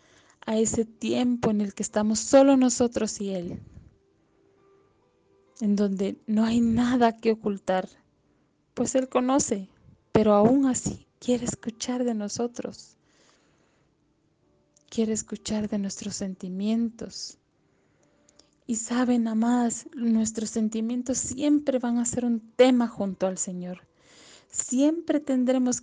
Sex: female